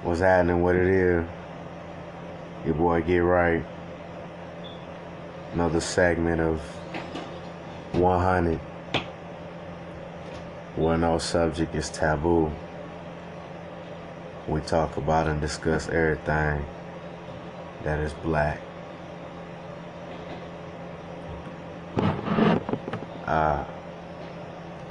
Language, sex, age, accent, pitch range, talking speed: English, male, 30-49, American, 80-90 Hz, 65 wpm